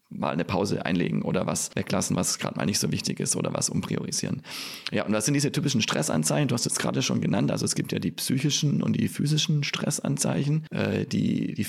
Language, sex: German, male